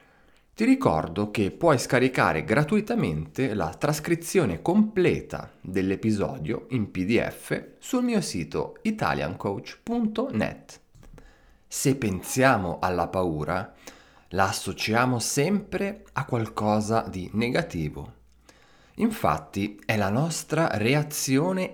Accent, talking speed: native, 90 wpm